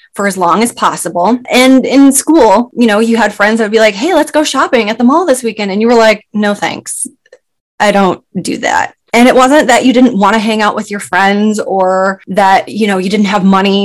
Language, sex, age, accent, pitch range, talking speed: English, female, 20-39, American, 190-240 Hz, 245 wpm